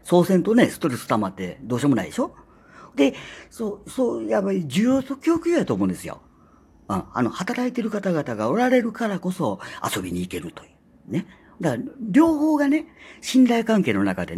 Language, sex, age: Japanese, female, 50-69